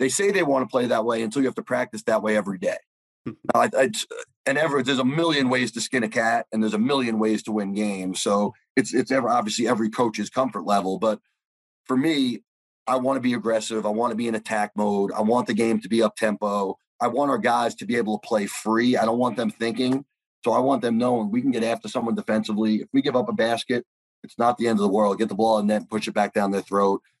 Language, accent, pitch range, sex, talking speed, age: English, American, 105-130 Hz, male, 270 wpm, 30-49